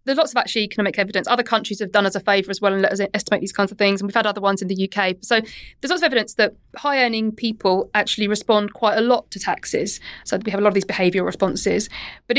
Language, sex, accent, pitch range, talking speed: English, female, British, 195-230 Hz, 275 wpm